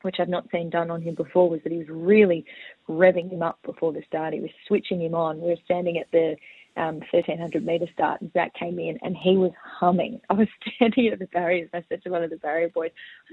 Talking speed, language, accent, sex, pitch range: 250 wpm, English, Australian, female, 165-190 Hz